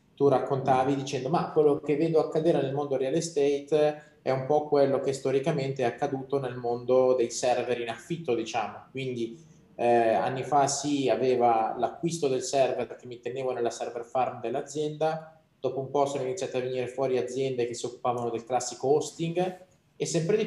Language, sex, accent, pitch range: Italian, male, native, 125-155 Hz